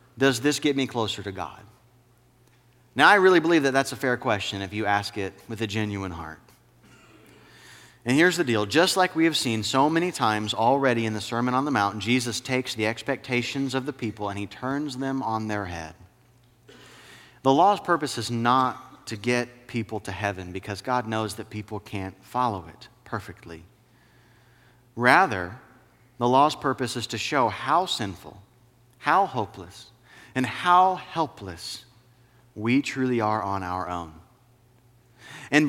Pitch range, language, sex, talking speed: 110-145 Hz, English, male, 165 wpm